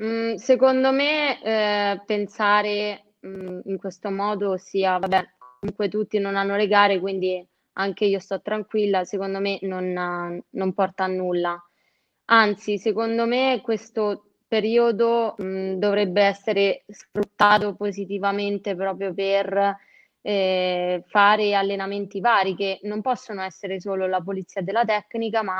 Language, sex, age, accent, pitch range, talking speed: Italian, female, 20-39, native, 190-210 Hz, 120 wpm